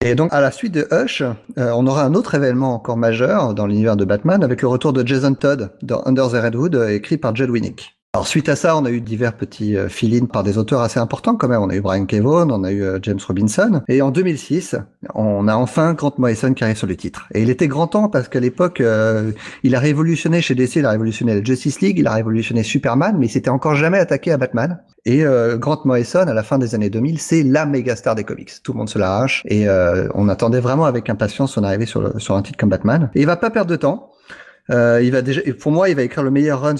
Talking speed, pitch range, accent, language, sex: 265 wpm, 110-145 Hz, French, French, male